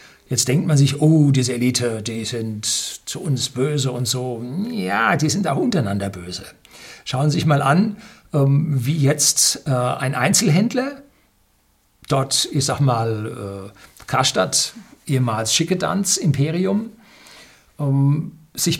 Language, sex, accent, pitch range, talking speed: German, male, German, 125-165 Hz, 120 wpm